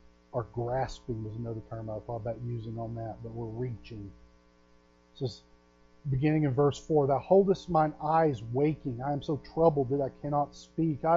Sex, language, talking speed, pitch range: male, English, 185 wpm, 135-190 Hz